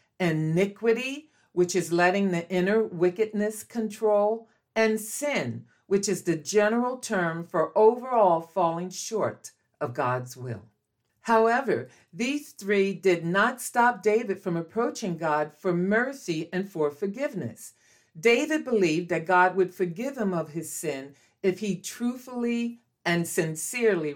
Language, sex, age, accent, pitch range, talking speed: English, female, 50-69, American, 160-220 Hz, 130 wpm